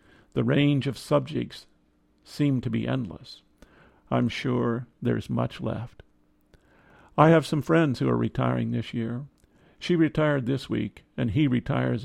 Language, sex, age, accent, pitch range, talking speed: English, male, 50-69, American, 100-135 Hz, 145 wpm